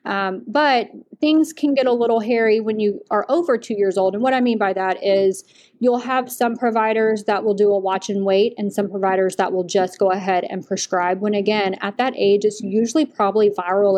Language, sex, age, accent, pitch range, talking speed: English, female, 30-49, American, 195-225 Hz, 225 wpm